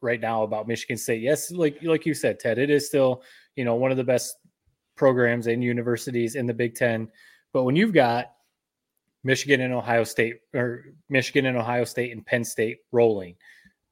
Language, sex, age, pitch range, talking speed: English, male, 20-39, 115-135 Hz, 190 wpm